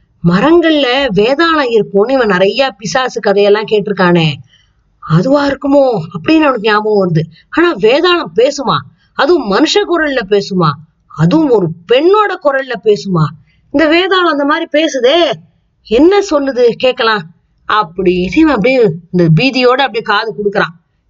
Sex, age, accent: female, 20-39, native